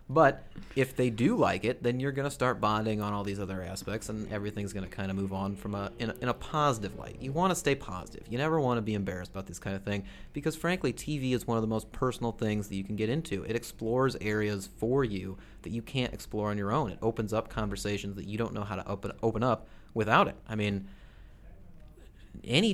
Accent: American